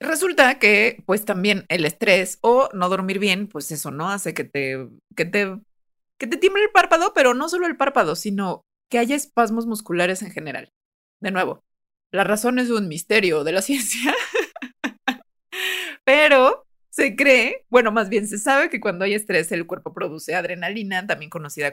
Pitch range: 175-245 Hz